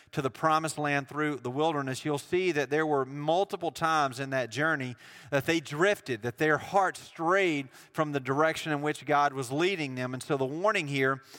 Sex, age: male, 40-59